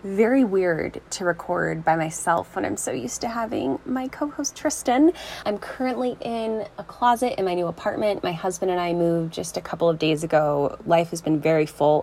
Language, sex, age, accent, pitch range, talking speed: English, female, 10-29, American, 165-205 Hz, 200 wpm